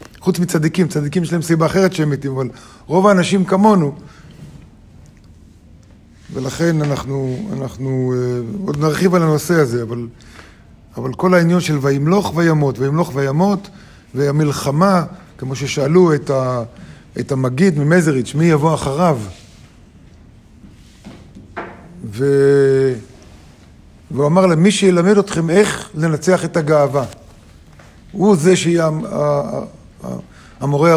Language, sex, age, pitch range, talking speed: Hebrew, male, 50-69, 125-175 Hz, 110 wpm